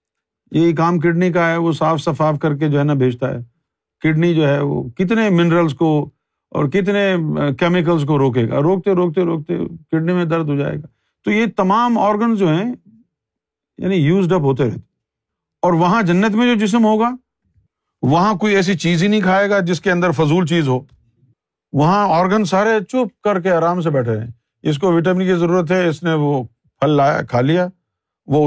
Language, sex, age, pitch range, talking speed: Urdu, male, 50-69, 140-185 Hz, 195 wpm